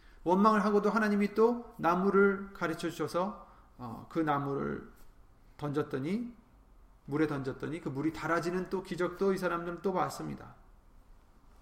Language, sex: Korean, male